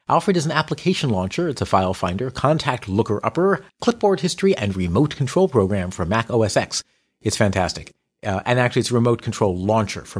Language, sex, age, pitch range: English, male, 40-59, 105-150 Hz